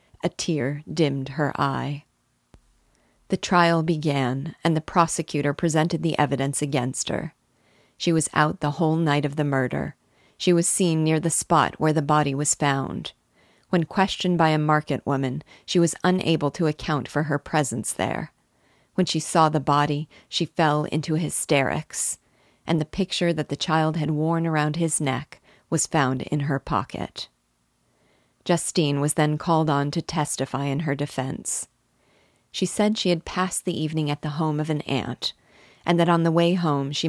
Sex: female